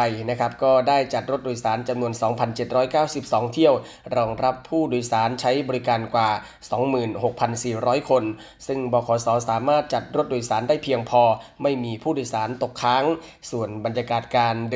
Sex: male